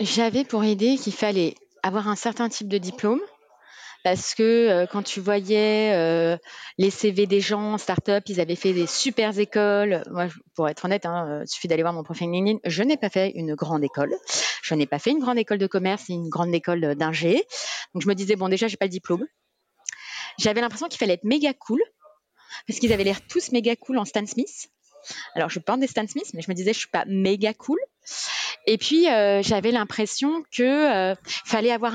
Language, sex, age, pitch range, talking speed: French, female, 30-49, 190-240 Hz, 220 wpm